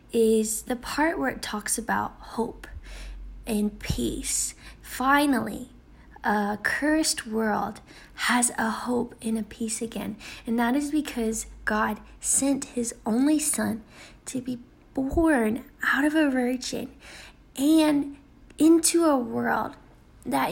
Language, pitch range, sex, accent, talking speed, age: English, 230-285 Hz, female, American, 125 wpm, 10-29